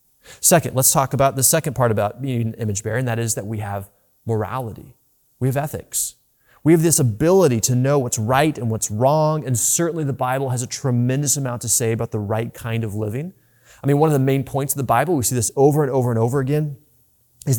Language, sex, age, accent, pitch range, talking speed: English, male, 30-49, American, 115-145 Hz, 225 wpm